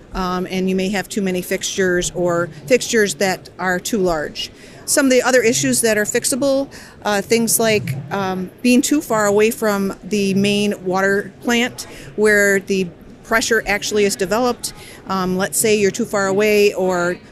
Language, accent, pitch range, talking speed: English, American, 185-215 Hz, 170 wpm